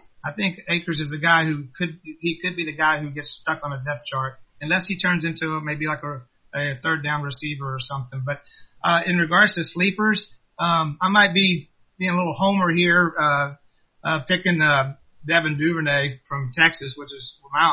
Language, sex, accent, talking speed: English, male, American, 205 wpm